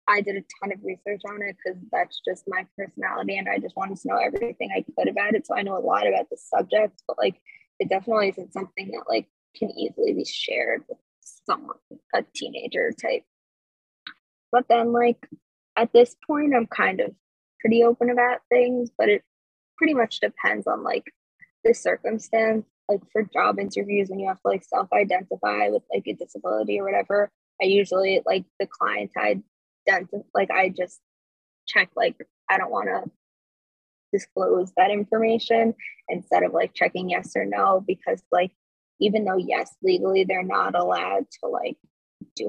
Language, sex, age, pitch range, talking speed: English, female, 10-29, 185-240 Hz, 175 wpm